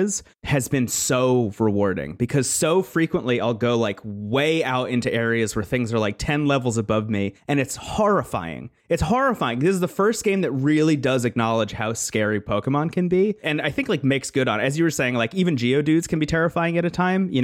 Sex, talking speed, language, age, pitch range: male, 215 wpm, English, 30-49, 110-145 Hz